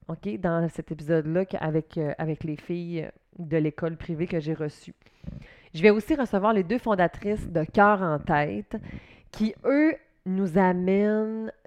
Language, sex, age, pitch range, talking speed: French, female, 30-49, 160-190 Hz, 150 wpm